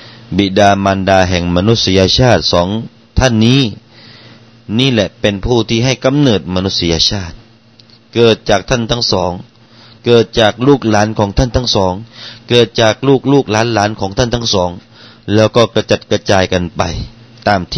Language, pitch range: Thai, 100-115 Hz